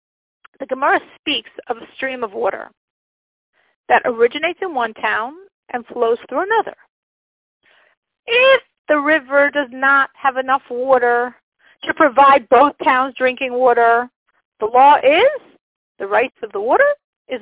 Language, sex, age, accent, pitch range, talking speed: English, female, 50-69, American, 240-320 Hz, 140 wpm